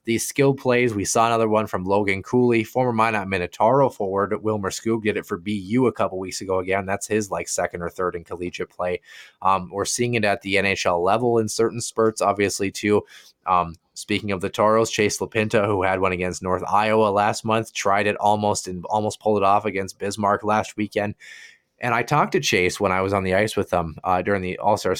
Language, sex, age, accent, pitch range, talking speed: English, male, 20-39, American, 95-120 Hz, 220 wpm